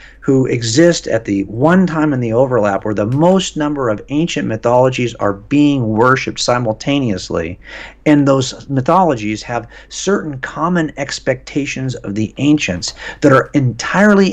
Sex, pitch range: male, 110-150 Hz